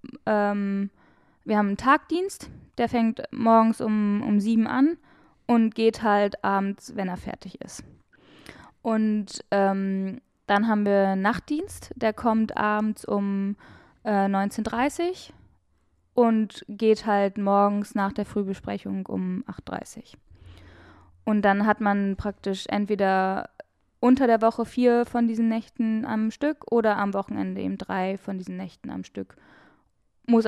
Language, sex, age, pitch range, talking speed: German, female, 10-29, 200-235 Hz, 135 wpm